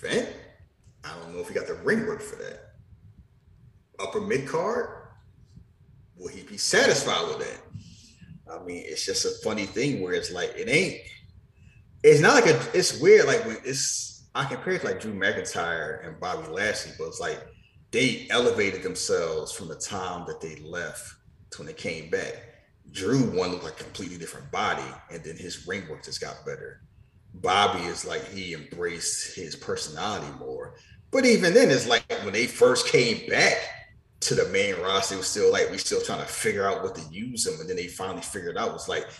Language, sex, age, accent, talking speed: English, male, 30-49, American, 195 wpm